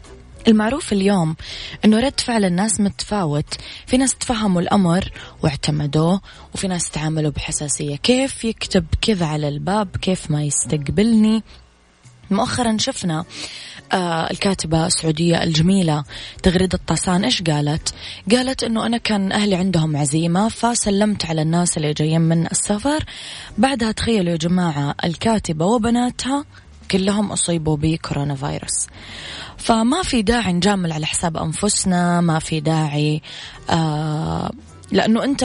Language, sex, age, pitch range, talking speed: Arabic, female, 20-39, 155-215 Hz, 120 wpm